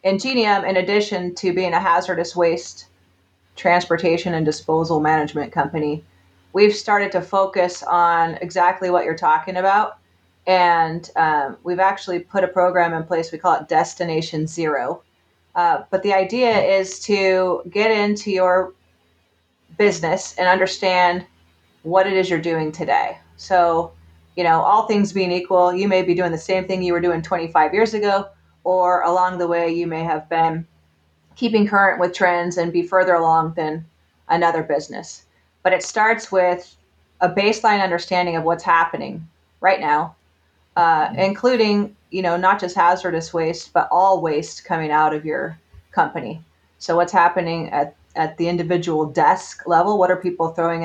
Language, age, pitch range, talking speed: English, 30-49, 160-190 Hz, 160 wpm